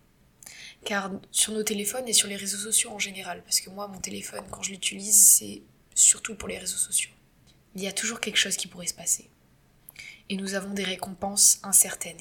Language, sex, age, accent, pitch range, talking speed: French, female, 20-39, French, 180-200 Hz, 200 wpm